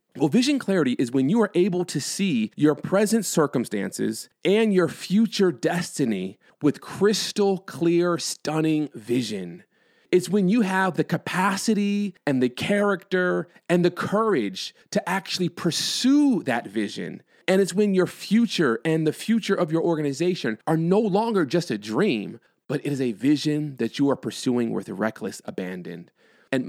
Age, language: 40-59, English